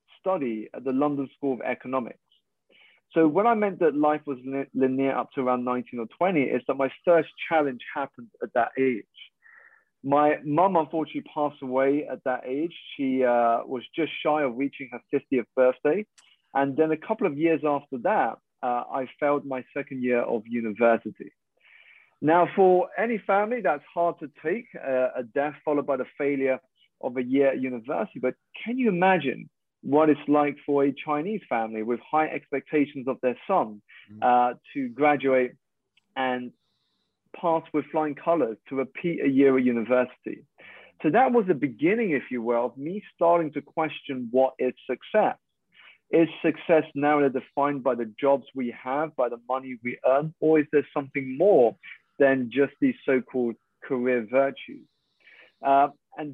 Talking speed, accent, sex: 170 wpm, British, male